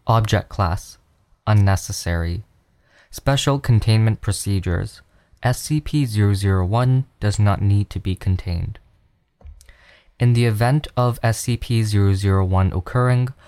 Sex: male